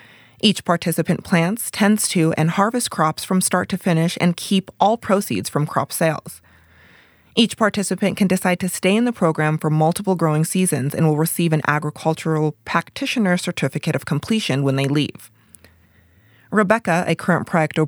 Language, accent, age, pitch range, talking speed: English, American, 20-39, 155-190 Hz, 160 wpm